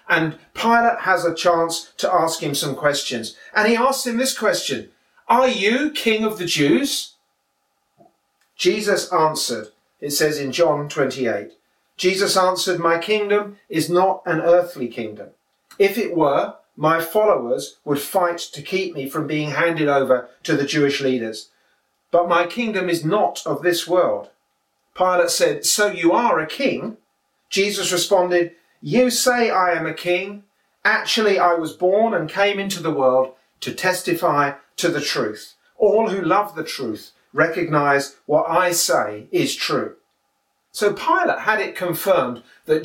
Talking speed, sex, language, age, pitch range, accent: 155 wpm, male, English, 40-59, 150-205 Hz, British